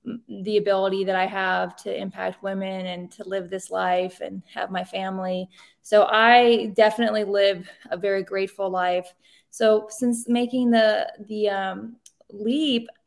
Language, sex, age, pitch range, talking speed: English, female, 20-39, 200-230 Hz, 145 wpm